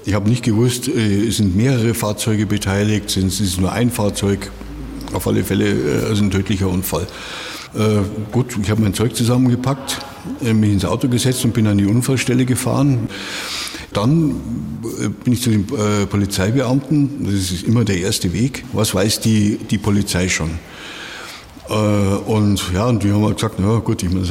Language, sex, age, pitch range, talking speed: German, male, 60-79, 95-115 Hz, 170 wpm